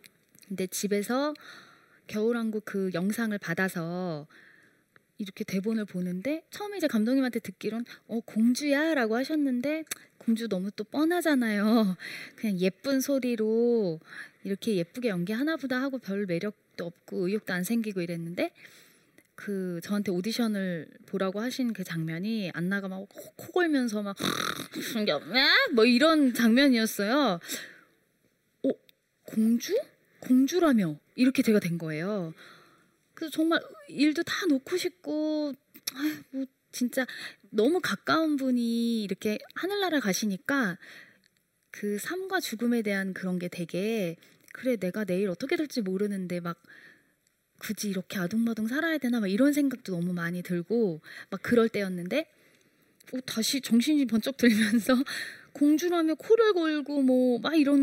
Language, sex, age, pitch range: Korean, female, 20-39, 195-275 Hz